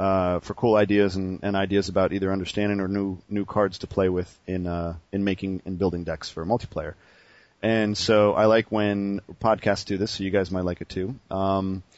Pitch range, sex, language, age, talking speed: 95-110 Hz, male, English, 30-49, 220 wpm